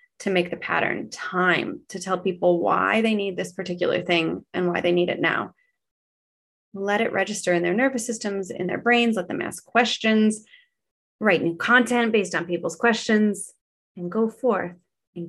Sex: female